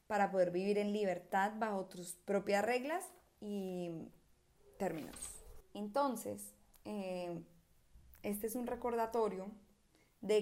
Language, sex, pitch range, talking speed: Spanish, female, 195-235 Hz, 105 wpm